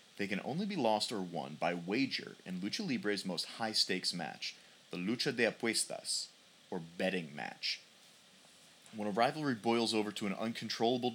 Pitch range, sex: 95-120 Hz, male